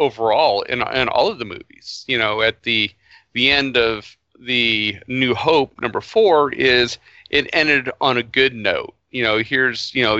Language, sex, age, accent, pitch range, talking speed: English, male, 40-59, American, 110-130 Hz, 180 wpm